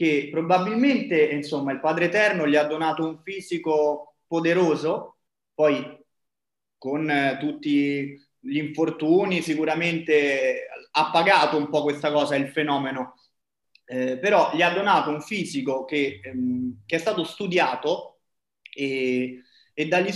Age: 30-49